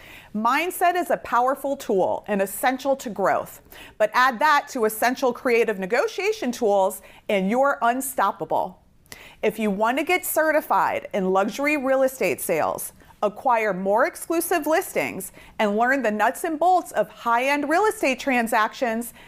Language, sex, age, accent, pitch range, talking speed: English, female, 40-59, American, 215-315 Hz, 145 wpm